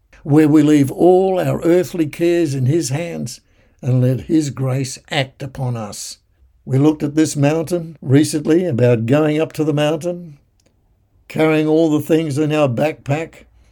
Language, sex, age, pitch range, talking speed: English, male, 60-79, 110-150 Hz, 160 wpm